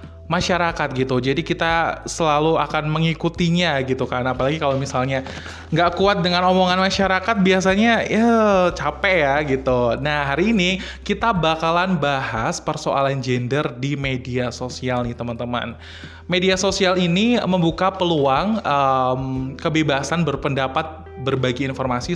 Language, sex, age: Indonesian, male, 20-39